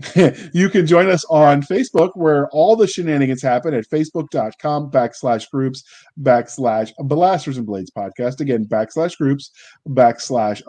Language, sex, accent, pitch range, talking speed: English, male, American, 125-175 Hz, 135 wpm